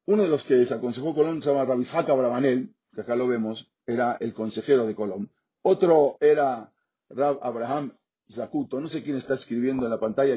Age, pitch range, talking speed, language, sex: 50-69, 115-150 Hz, 185 wpm, Spanish, male